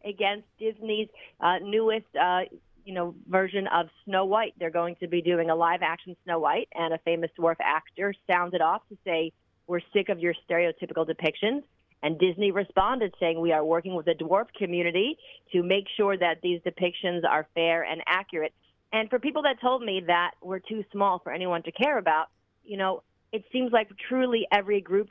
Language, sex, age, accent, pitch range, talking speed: English, female, 40-59, American, 170-215 Hz, 190 wpm